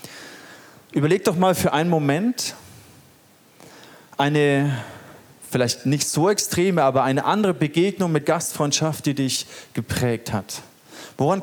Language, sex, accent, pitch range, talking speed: German, male, German, 130-170 Hz, 115 wpm